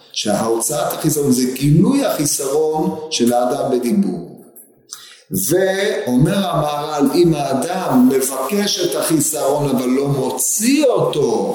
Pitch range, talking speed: 130-195 Hz, 100 wpm